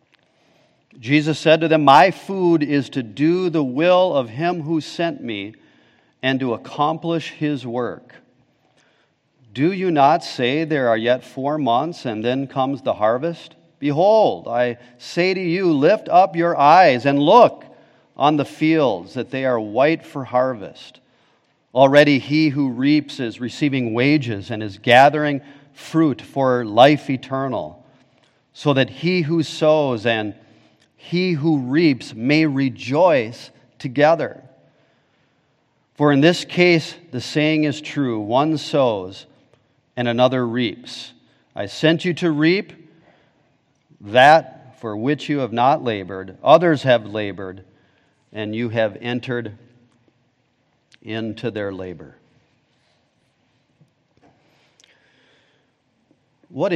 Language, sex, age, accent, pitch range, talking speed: English, male, 40-59, American, 120-155 Hz, 125 wpm